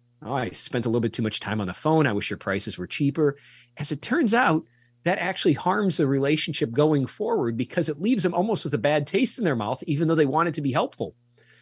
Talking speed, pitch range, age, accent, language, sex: 250 wpm, 120-155 Hz, 40-59, American, English, male